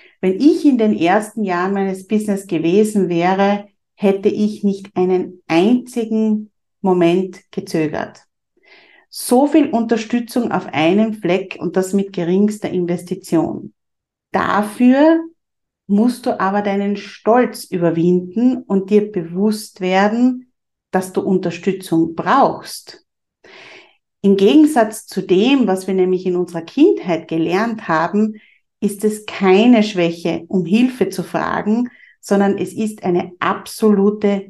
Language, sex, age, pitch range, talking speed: German, female, 50-69, 185-220 Hz, 120 wpm